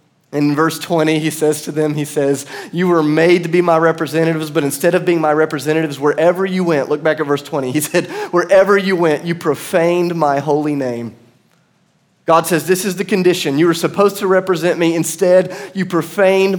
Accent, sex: American, male